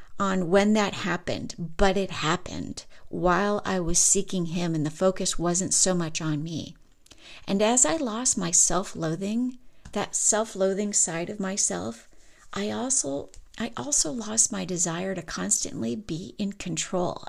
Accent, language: American, English